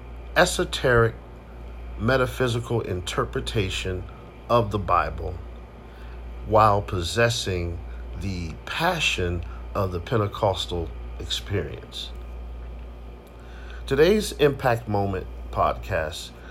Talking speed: 65 wpm